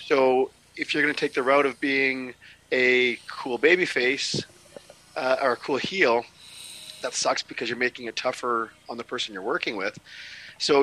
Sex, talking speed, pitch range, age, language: male, 185 wpm, 115-135 Hz, 40-59, English